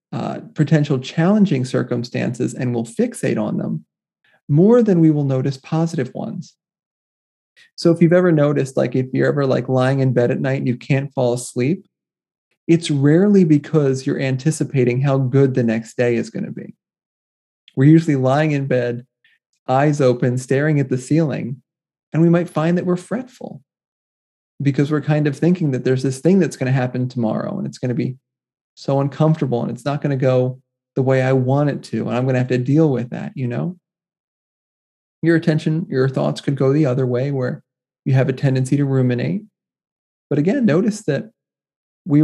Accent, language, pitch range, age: American, English, 130-165 Hz, 30-49